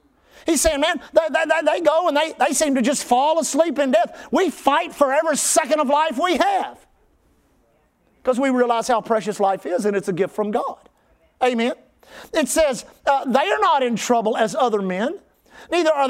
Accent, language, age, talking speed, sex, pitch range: American, English, 50-69, 195 wpm, male, 240-305 Hz